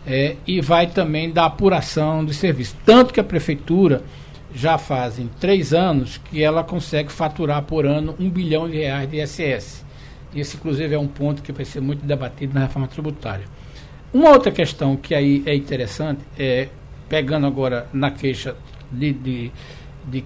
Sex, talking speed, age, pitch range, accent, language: male, 170 wpm, 60-79, 135-170 Hz, Brazilian, Portuguese